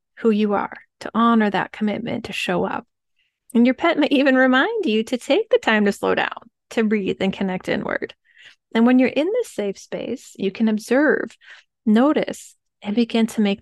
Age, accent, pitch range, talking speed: 30-49, American, 205-270 Hz, 195 wpm